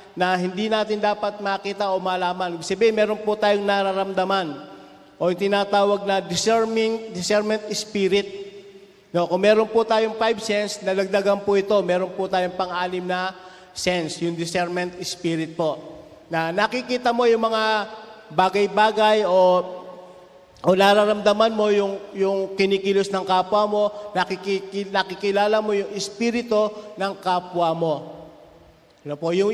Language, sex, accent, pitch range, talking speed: Filipino, male, native, 185-215 Hz, 125 wpm